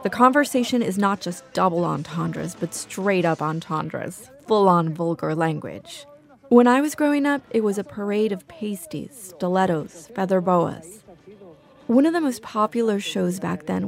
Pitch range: 175-220 Hz